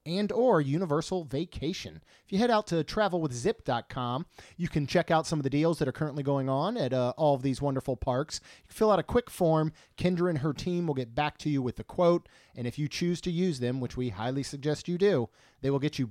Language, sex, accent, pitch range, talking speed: English, male, American, 130-160 Hz, 245 wpm